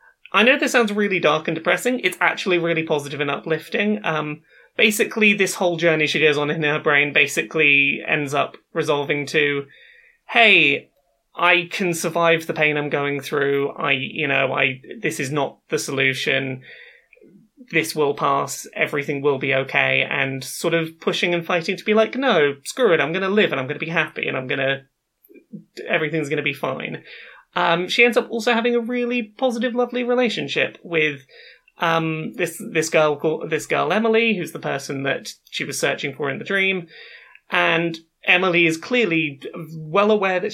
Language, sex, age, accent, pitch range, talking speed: English, male, 30-49, British, 155-215 Hz, 180 wpm